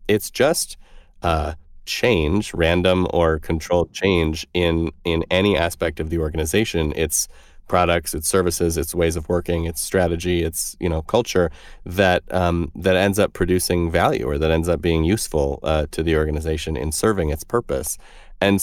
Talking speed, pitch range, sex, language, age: 160 wpm, 80-95 Hz, male, English, 30-49